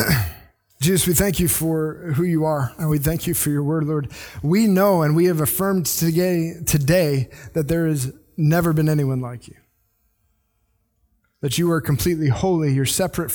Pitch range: 125-165 Hz